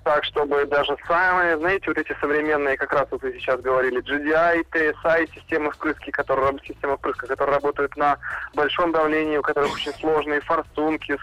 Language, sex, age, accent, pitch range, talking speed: Russian, male, 20-39, native, 140-180 Hz, 150 wpm